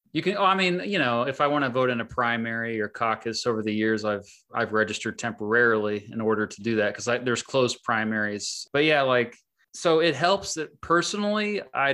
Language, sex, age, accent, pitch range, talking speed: English, male, 30-49, American, 115-140 Hz, 210 wpm